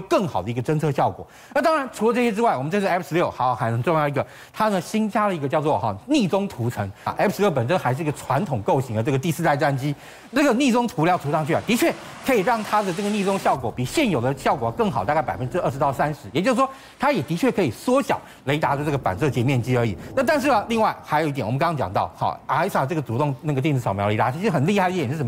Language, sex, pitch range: Chinese, male, 145-215 Hz